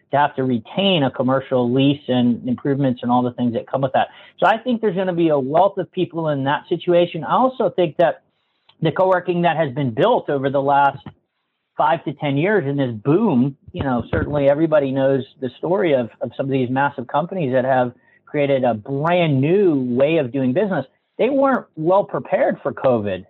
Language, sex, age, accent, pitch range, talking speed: English, male, 40-59, American, 135-175 Hz, 210 wpm